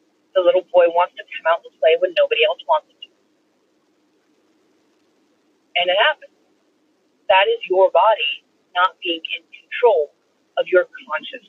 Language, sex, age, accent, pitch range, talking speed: English, female, 30-49, American, 215-350 Hz, 150 wpm